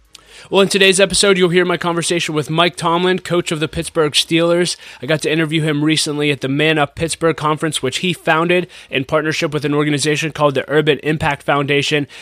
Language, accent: English, American